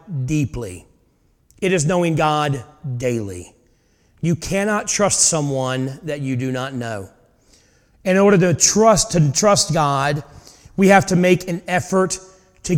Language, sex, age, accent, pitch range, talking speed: English, male, 40-59, American, 130-180 Hz, 135 wpm